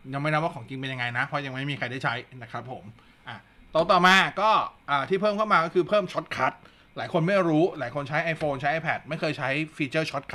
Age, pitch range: 20-39, 140-180 Hz